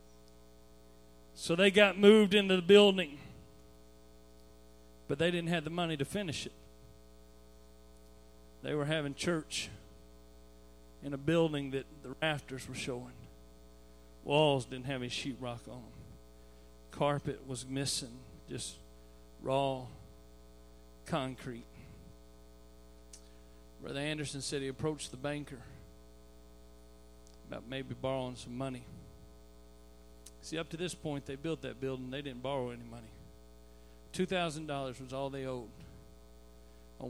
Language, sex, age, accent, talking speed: English, male, 40-59, American, 120 wpm